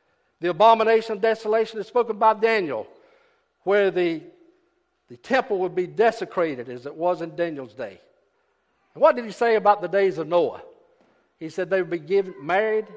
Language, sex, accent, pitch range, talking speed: English, male, American, 175-225 Hz, 170 wpm